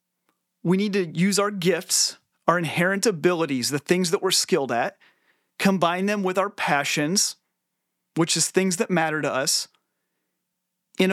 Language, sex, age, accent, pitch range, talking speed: English, male, 30-49, American, 160-195 Hz, 150 wpm